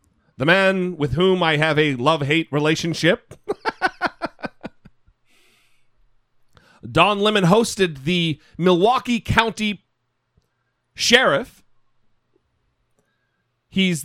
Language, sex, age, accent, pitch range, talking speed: English, male, 40-59, American, 145-190 Hz, 75 wpm